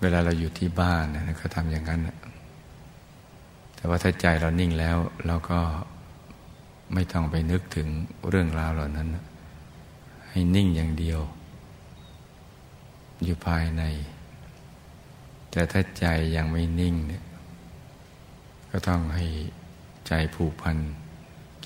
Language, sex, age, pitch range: Thai, male, 60-79, 80-90 Hz